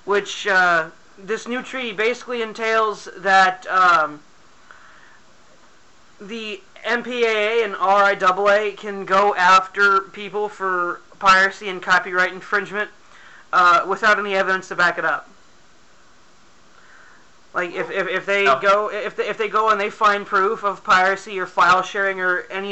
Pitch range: 185-210 Hz